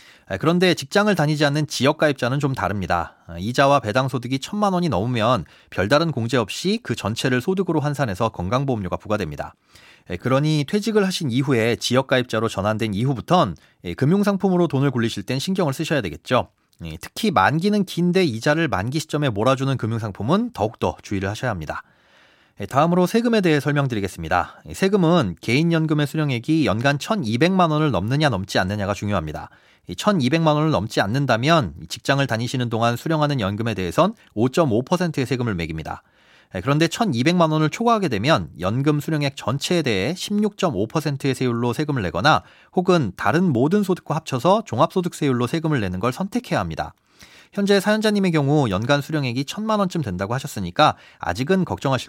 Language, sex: Korean, male